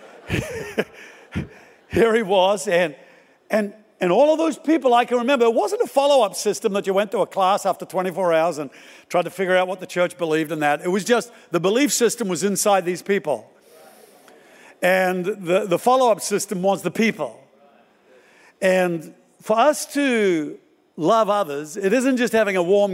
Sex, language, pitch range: male, English, 175-230 Hz